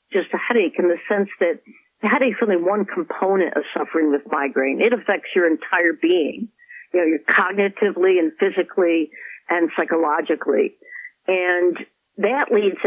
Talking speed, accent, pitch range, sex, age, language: 155 wpm, American, 165-225 Hz, female, 60-79, English